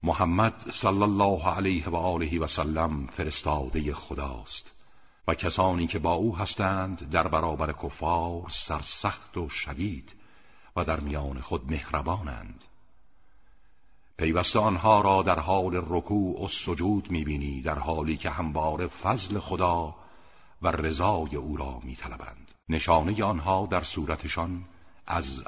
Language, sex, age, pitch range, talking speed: Persian, male, 60-79, 75-95 Hz, 120 wpm